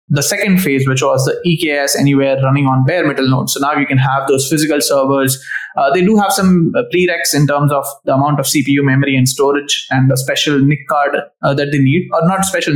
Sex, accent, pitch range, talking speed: male, Indian, 135-155 Hz, 230 wpm